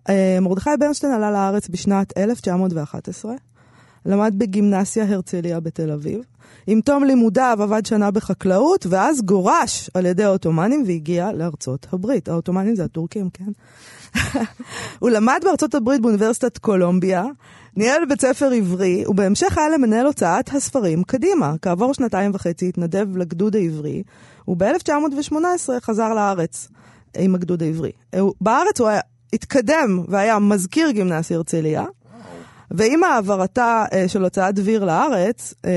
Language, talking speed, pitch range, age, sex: Hebrew, 120 wpm, 175-235 Hz, 20-39, female